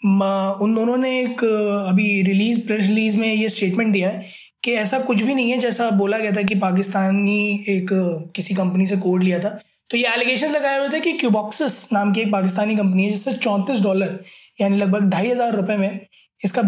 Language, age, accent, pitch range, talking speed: Hindi, 20-39, native, 195-235 Hz, 200 wpm